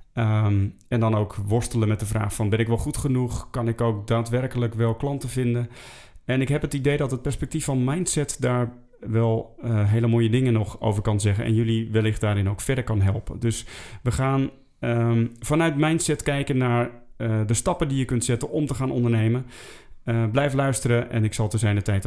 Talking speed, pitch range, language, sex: 210 wpm, 105-120 Hz, Dutch, male